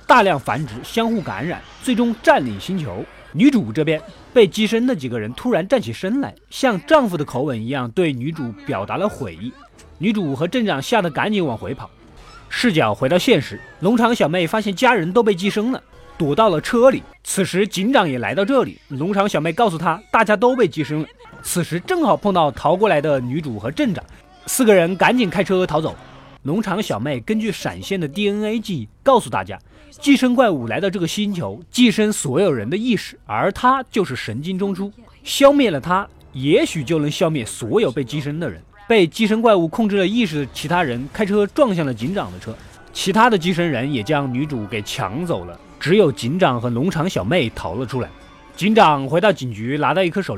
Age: 20-39